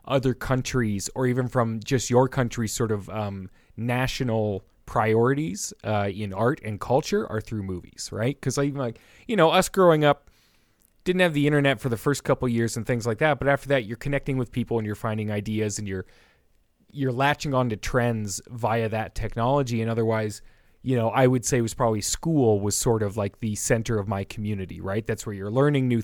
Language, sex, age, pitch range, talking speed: English, male, 30-49, 105-130 Hz, 205 wpm